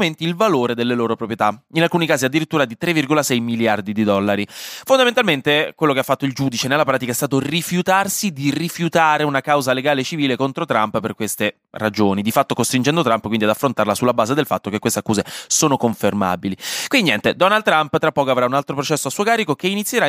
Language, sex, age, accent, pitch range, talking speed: Italian, male, 20-39, native, 120-190 Hz, 205 wpm